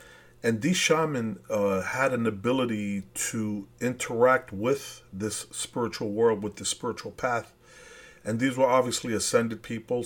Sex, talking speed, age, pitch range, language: male, 135 wpm, 40-59, 100-125 Hz, English